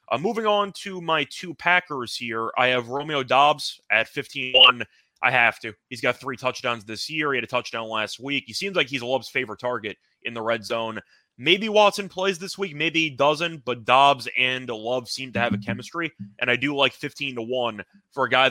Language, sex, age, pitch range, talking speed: English, male, 20-39, 120-150 Hz, 215 wpm